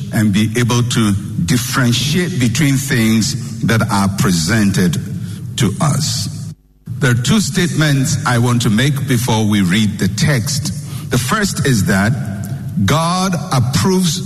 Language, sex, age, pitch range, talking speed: English, male, 60-79, 125-155 Hz, 130 wpm